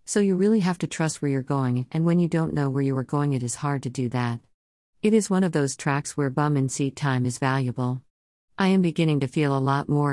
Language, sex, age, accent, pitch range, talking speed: English, female, 50-69, American, 130-170 Hz, 265 wpm